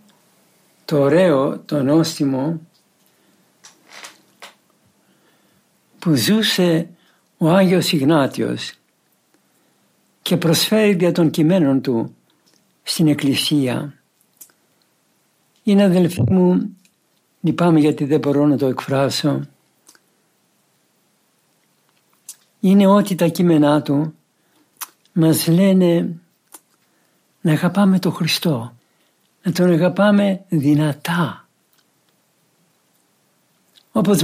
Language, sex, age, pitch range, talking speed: Greek, male, 60-79, 150-190 Hz, 75 wpm